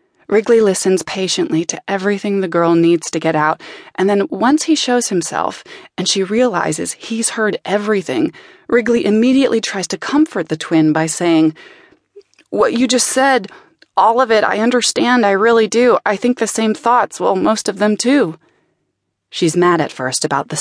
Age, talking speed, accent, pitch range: 20-39, 175 wpm, American, 175-245 Hz